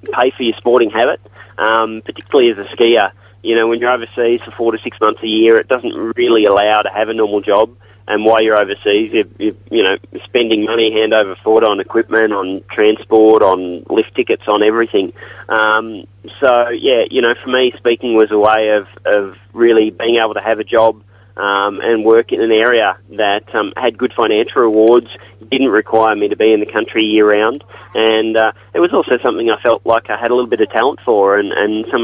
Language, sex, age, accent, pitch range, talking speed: English, male, 30-49, Australian, 105-115 Hz, 215 wpm